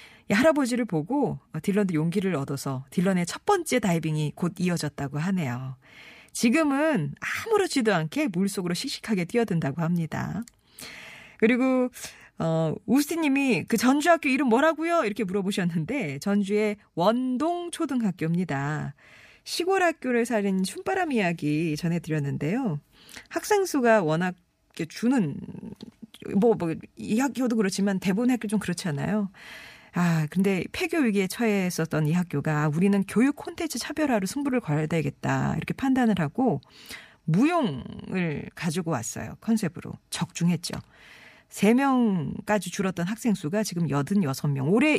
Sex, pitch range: female, 160-240 Hz